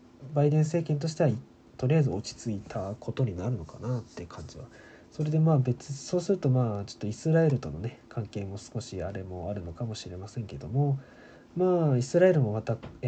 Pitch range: 115-150 Hz